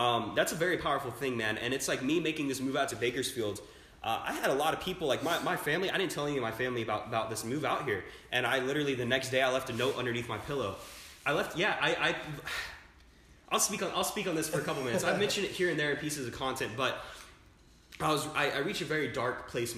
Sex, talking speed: male, 275 wpm